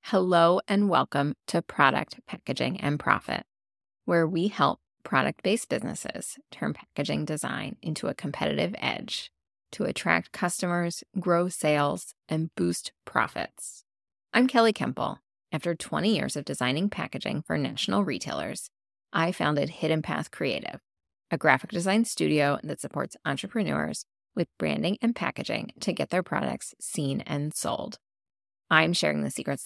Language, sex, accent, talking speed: English, female, American, 135 wpm